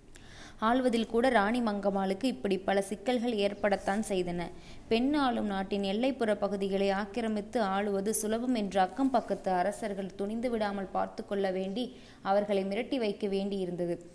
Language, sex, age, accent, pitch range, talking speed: Tamil, female, 20-39, native, 195-235 Hz, 120 wpm